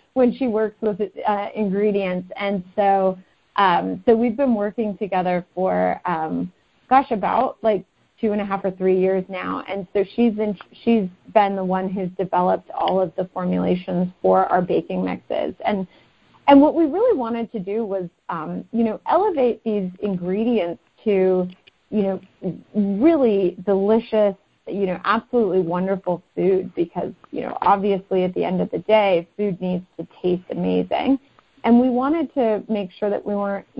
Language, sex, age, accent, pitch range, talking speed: English, female, 30-49, American, 180-225 Hz, 165 wpm